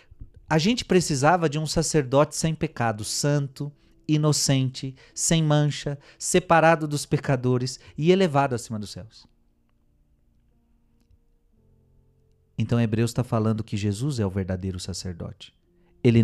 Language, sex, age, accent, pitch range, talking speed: Portuguese, male, 40-59, Brazilian, 105-145 Hz, 120 wpm